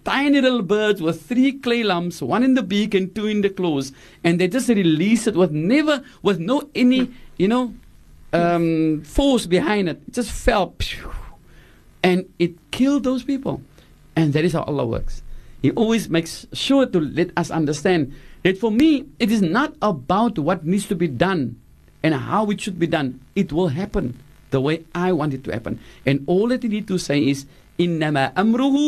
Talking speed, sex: 190 wpm, male